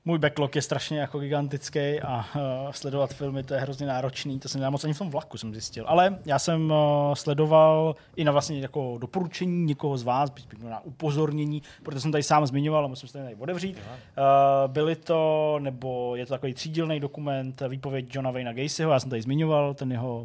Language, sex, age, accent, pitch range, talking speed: Czech, male, 20-39, native, 125-155 Hz, 205 wpm